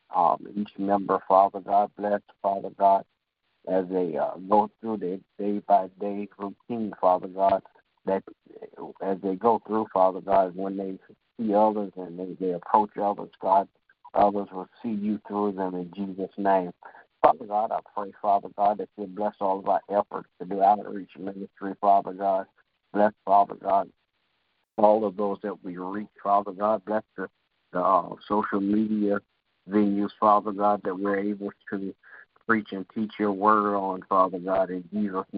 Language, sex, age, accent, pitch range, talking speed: English, male, 50-69, American, 95-105 Hz, 165 wpm